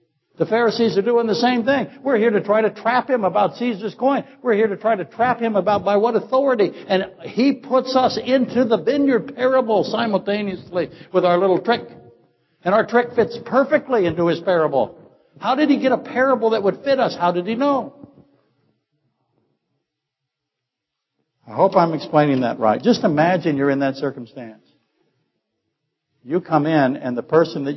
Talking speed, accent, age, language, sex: 175 wpm, American, 60-79, English, male